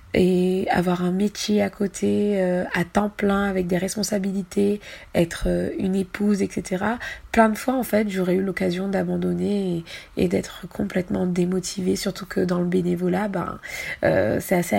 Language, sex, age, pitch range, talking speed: French, female, 20-39, 180-205 Hz, 165 wpm